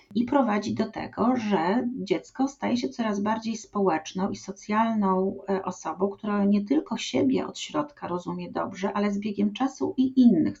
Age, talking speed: 40-59, 160 wpm